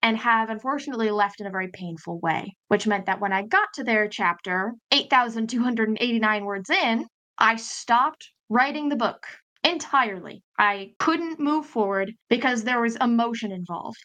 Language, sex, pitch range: English, female, 205-255 Hz